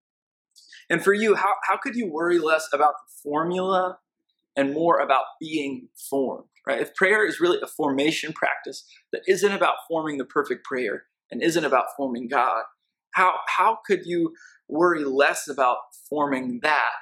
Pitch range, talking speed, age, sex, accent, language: 140-190 Hz, 160 wpm, 20-39, male, American, English